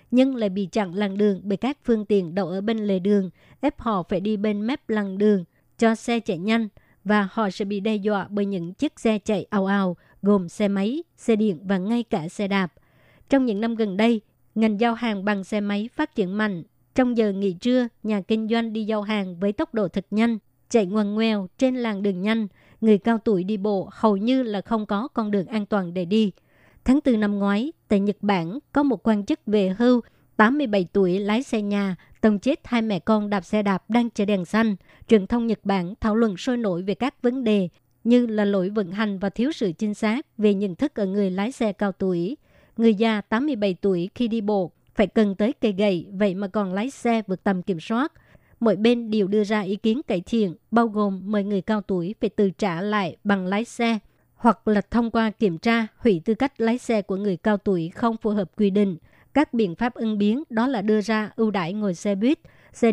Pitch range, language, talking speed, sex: 200-230 Hz, Vietnamese, 230 wpm, male